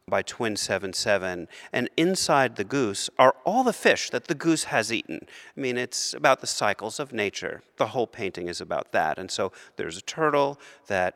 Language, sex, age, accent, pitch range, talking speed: English, male, 40-59, American, 120-165 Hz, 205 wpm